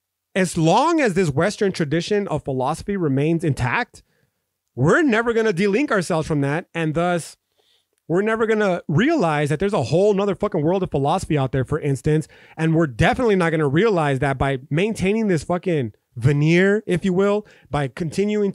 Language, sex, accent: English, male, American